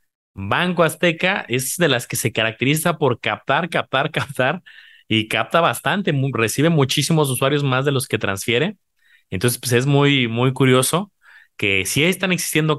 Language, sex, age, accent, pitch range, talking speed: Spanish, male, 30-49, Mexican, 110-150 Hz, 160 wpm